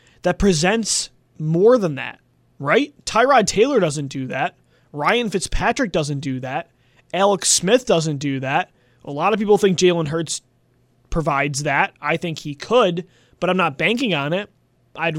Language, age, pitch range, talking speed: English, 20-39, 160-200 Hz, 160 wpm